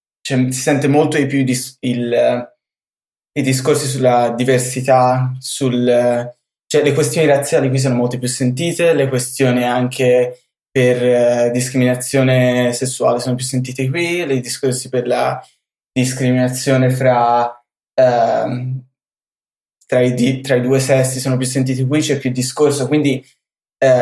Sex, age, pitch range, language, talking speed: male, 20-39, 125-140 Hz, Italian, 140 wpm